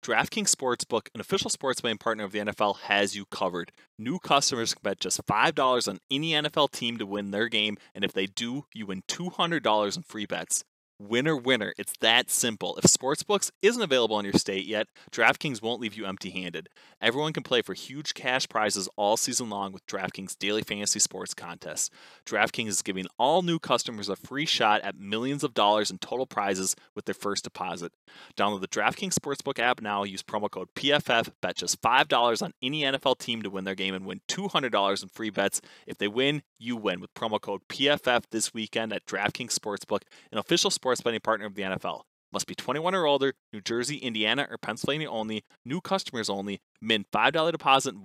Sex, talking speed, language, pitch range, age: male, 200 wpm, English, 100-135 Hz, 20-39